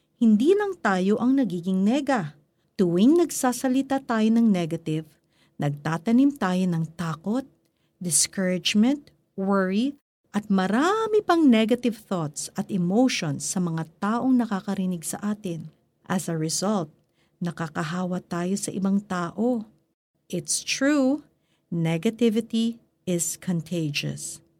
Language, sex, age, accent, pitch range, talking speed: Filipino, female, 50-69, native, 170-240 Hz, 105 wpm